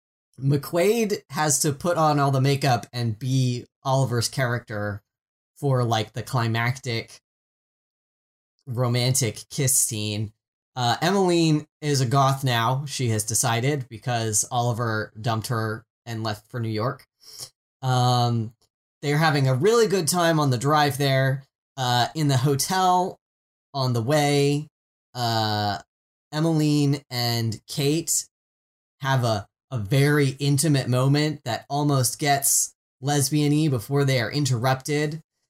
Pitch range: 115-150 Hz